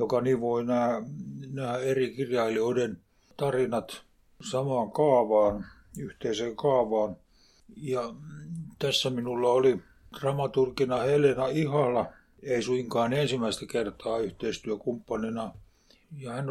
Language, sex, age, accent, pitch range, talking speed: Finnish, male, 60-79, native, 115-140 Hz, 90 wpm